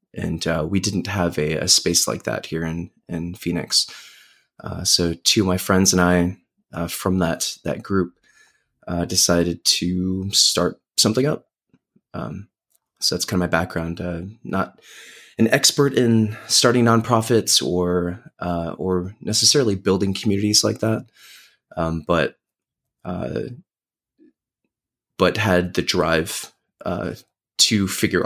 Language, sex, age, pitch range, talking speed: English, male, 20-39, 85-110 Hz, 140 wpm